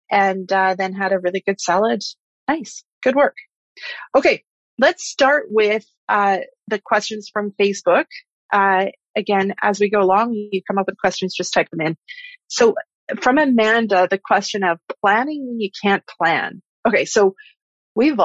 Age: 30-49